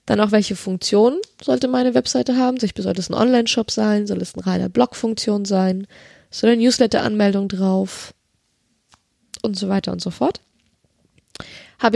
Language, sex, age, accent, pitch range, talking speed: German, female, 20-39, German, 205-245 Hz, 150 wpm